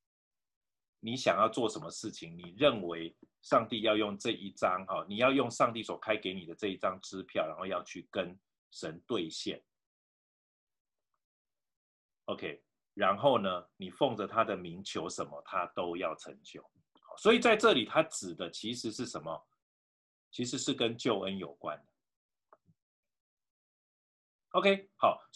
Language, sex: Chinese, male